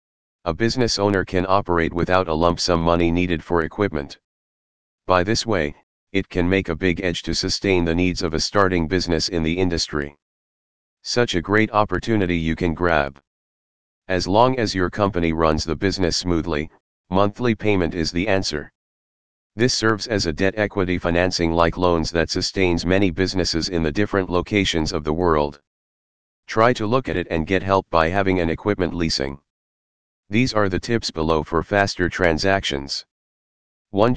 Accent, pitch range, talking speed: American, 80-100 Hz, 170 wpm